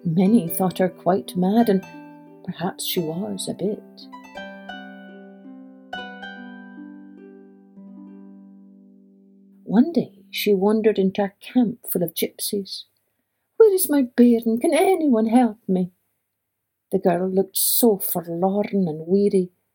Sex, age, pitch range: female, 60-79, 175-220 Hz